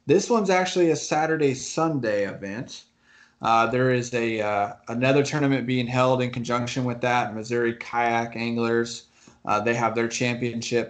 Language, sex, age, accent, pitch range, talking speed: English, male, 20-39, American, 115-135 Hz, 155 wpm